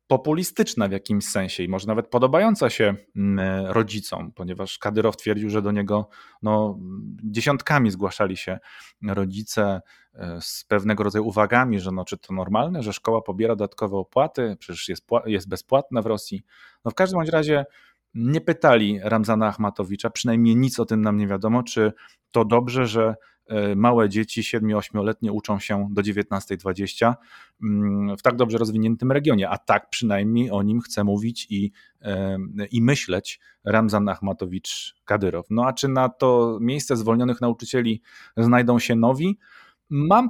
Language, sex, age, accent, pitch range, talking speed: Polish, male, 30-49, native, 100-125 Hz, 140 wpm